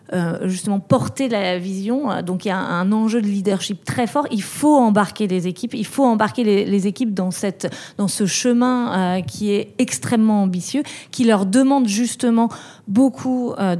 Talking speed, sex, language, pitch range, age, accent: 185 wpm, female, French, 185-225 Hz, 30-49, French